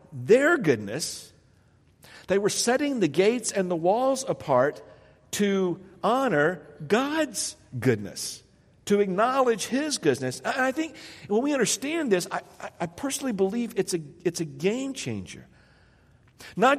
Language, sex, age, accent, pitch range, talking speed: English, male, 50-69, American, 150-225 Hz, 130 wpm